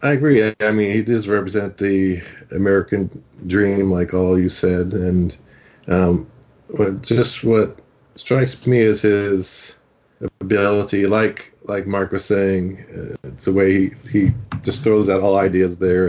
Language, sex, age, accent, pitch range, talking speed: English, male, 40-59, American, 90-110 Hz, 155 wpm